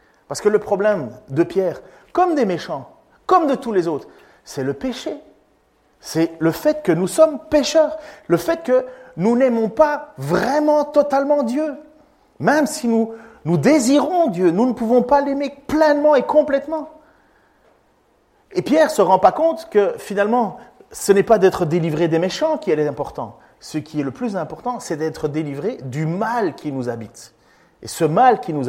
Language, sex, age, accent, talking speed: French, male, 40-59, French, 180 wpm